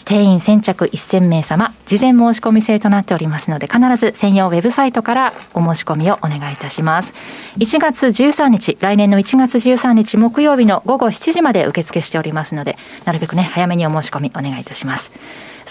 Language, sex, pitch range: Japanese, female, 160-250 Hz